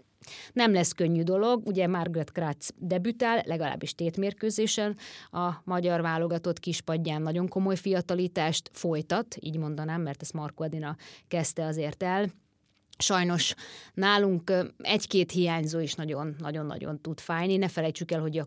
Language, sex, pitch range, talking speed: Hungarian, female, 160-190 Hz, 130 wpm